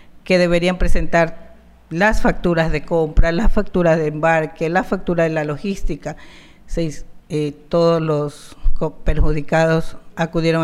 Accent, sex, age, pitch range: American, female, 50-69, 160-185 Hz